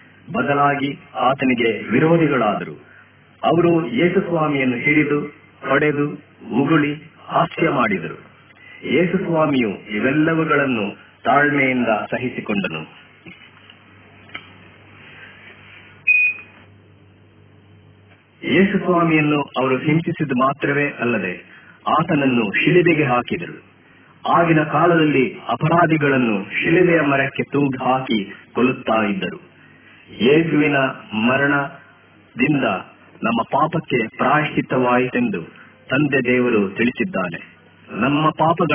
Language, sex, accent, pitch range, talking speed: Hindi, male, native, 120-155 Hz, 35 wpm